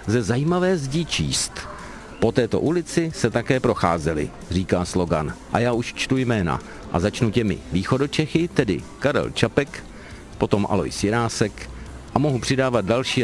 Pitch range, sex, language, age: 95-125 Hz, male, Czech, 50-69